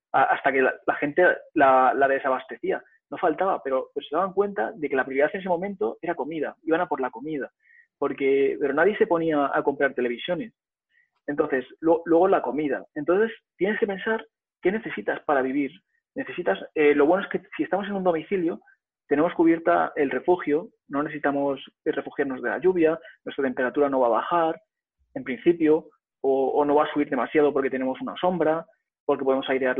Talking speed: 185 wpm